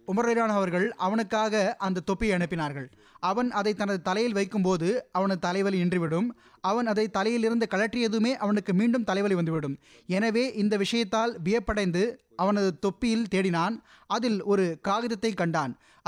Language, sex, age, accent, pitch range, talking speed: Tamil, male, 20-39, native, 170-220 Hz, 125 wpm